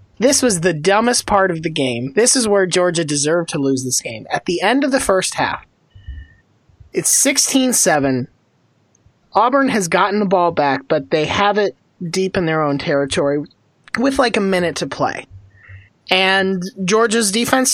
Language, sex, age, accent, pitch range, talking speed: English, male, 30-49, American, 145-205 Hz, 170 wpm